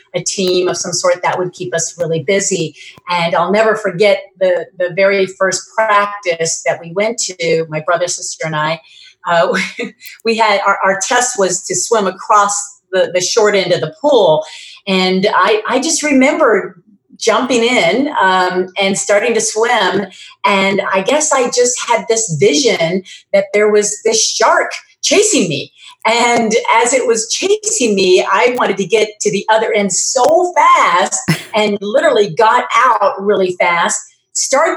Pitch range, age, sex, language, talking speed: 185-245 Hz, 30-49, female, English, 165 wpm